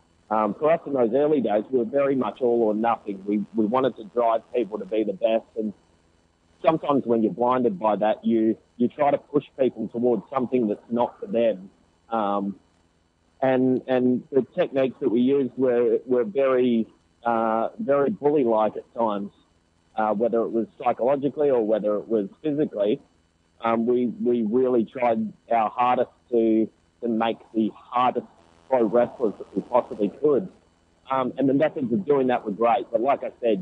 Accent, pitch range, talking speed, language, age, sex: Australian, 105-130 Hz, 175 wpm, English, 40-59, male